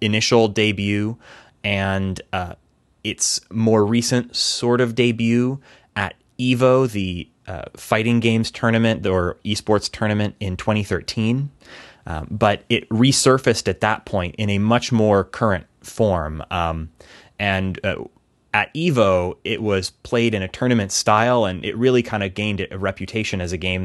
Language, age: English, 30-49